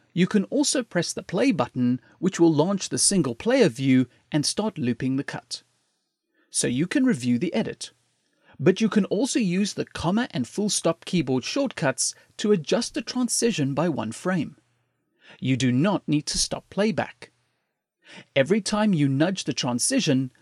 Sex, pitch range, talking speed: male, 130-205 Hz, 165 wpm